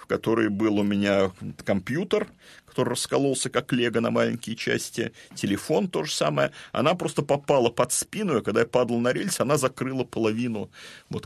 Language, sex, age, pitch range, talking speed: Russian, male, 40-59, 105-135 Hz, 160 wpm